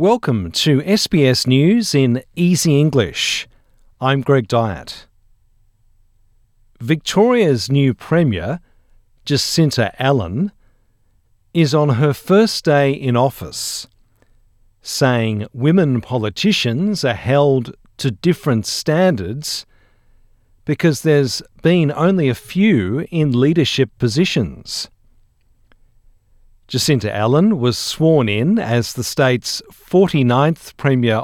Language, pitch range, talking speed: English, 110-150 Hz, 95 wpm